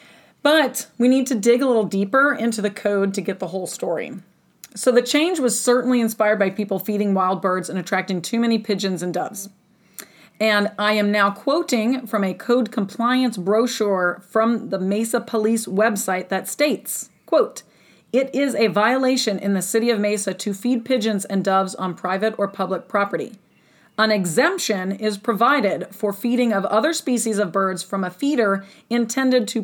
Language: English